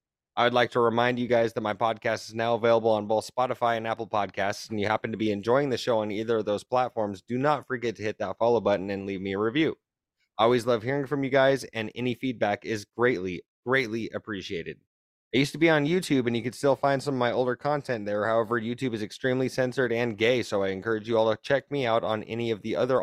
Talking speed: 255 wpm